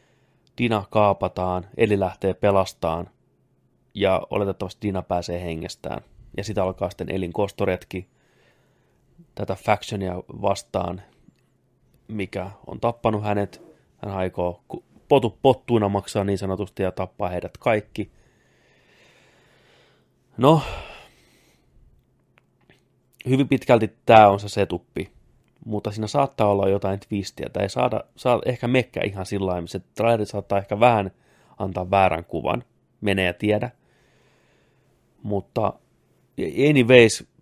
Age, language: 30-49, Finnish